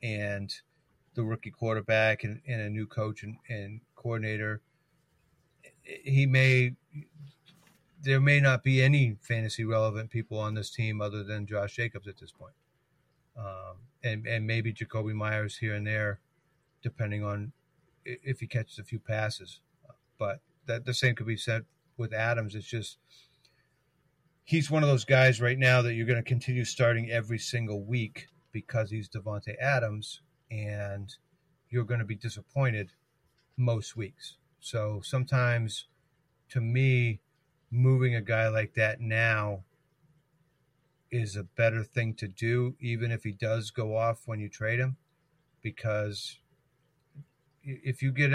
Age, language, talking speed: 40-59, English, 145 wpm